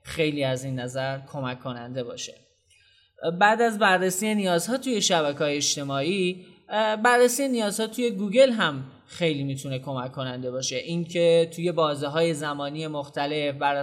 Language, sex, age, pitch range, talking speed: Persian, male, 20-39, 140-170 Hz, 135 wpm